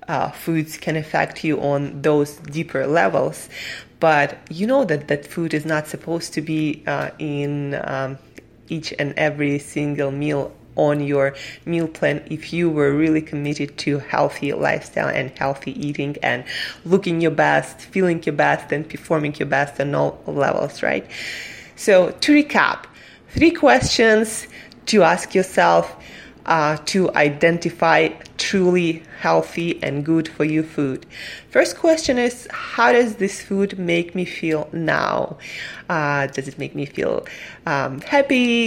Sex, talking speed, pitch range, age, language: female, 145 wpm, 145-200 Hz, 20-39, English